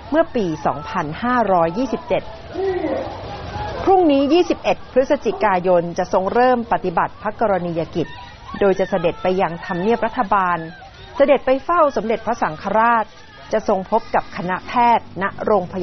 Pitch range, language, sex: 165-220 Hz, Thai, female